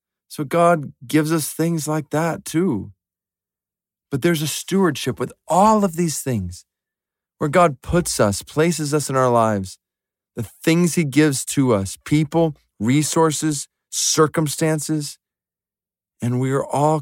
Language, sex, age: English, male, 40-59